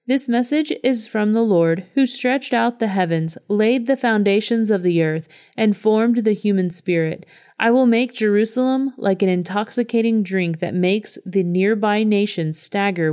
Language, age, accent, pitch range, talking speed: English, 30-49, American, 185-235 Hz, 165 wpm